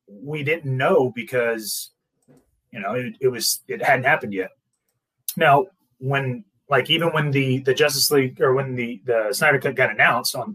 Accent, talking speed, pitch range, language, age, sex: American, 175 wpm, 125-160 Hz, English, 30-49, male